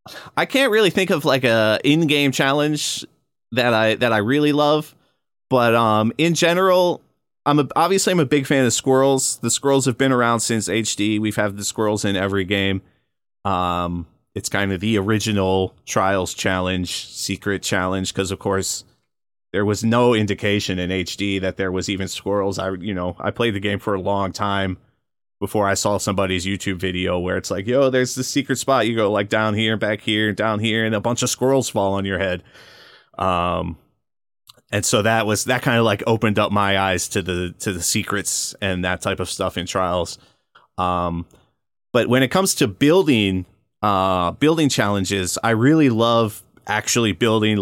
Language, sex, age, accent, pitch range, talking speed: English, male, 30-49, American, 95-120 Hz, 190 wpm